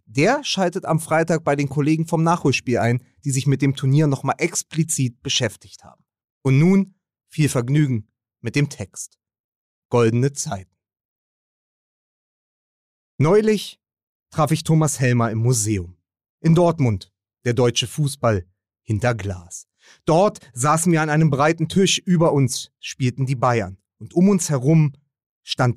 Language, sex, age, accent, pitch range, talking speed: German, male, 30-49, German, 120-165 Hz, 135 wpm